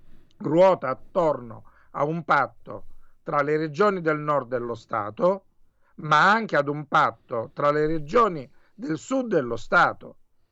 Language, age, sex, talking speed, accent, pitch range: Italian, 50-69, male, 150 wpm, native, 130-165 Hz